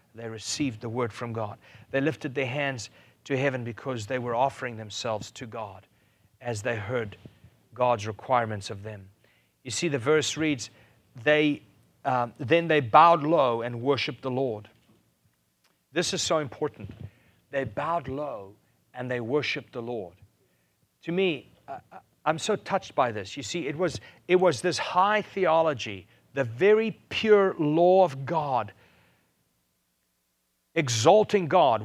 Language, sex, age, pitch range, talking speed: English, male, 40-59, 115-175 Hz, 145 wpm